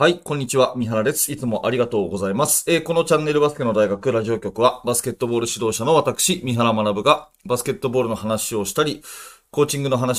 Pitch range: 110-150 Hz